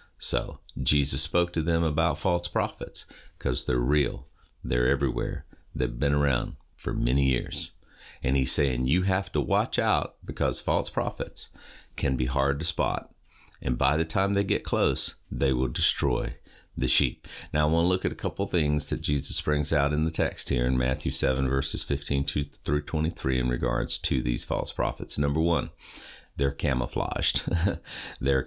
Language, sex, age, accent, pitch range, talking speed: English, male, 50-69, American, 65-80 Hz, 175 wpm